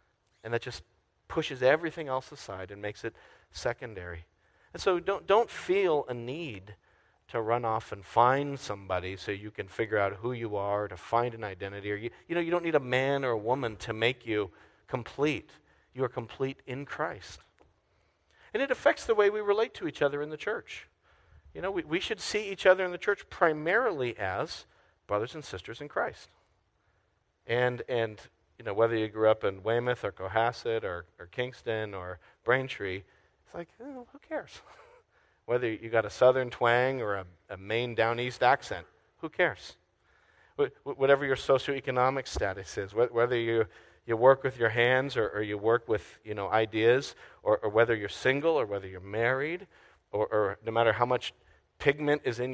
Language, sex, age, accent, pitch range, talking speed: English, male, 40-59, American, 105-140 Hz, 190 wpm